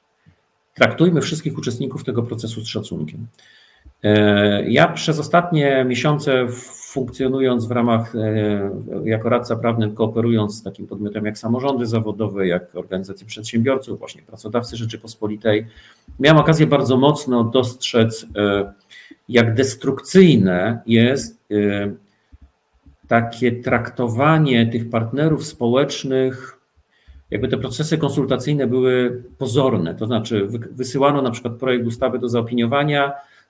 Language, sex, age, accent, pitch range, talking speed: Polish, male, 50-69, native, 110-135 Hz, 105 wpm